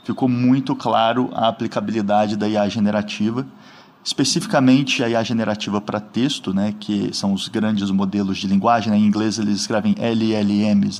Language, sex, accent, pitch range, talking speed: Portuguese, male, Brazilian, 110-150 Hz, 155 wpm